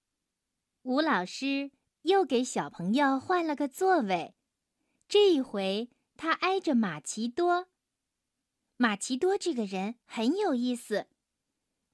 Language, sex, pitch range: Chinese, female, 255-365 Hz